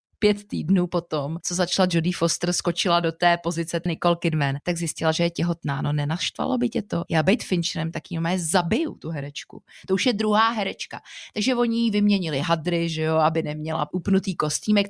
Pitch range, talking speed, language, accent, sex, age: 165-190 Hz, 185 wpm, Czech, native, female, 30-49